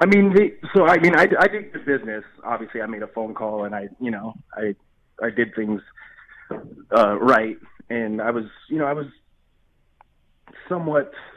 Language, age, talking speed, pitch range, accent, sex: English, 20-39, 185 wpm, 105-125 Hz, American, male